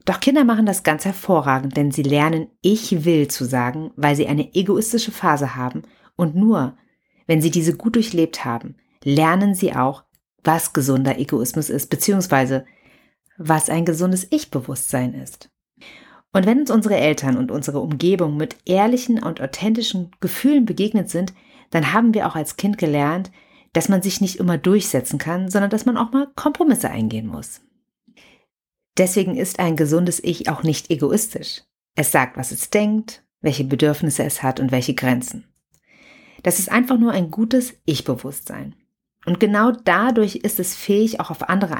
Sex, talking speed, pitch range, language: female, 160 wpm, 150-210 Hz, German